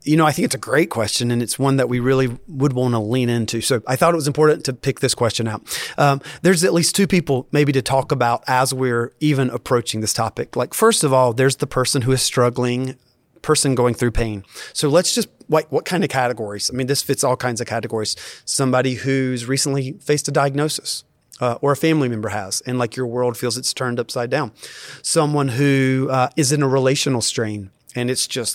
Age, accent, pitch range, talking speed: 30-49, American, 120-150 Hz, 225 wpm